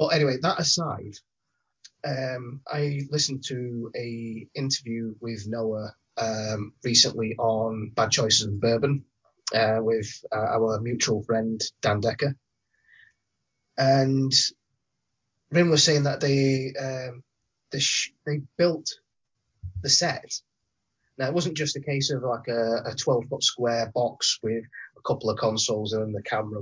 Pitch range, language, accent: 115-145 Hz, English, British